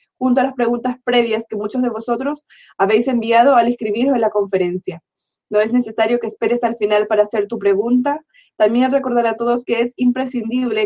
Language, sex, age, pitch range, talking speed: Spanish, female, 20-39, 210-245 Hz, 190 wpm